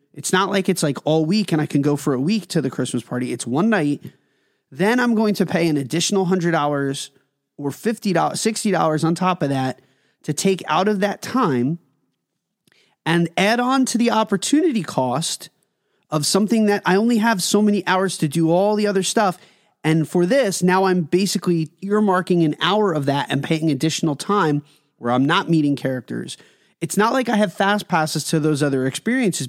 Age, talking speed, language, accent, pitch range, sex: 30-49, 195 wpm, English, American, 145-200 Hz, male